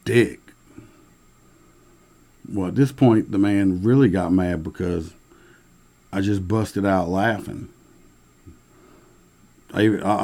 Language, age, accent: English, 50-69, American